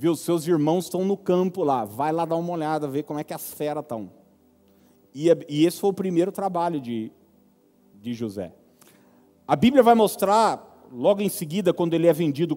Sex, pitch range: male, 160-225 Hz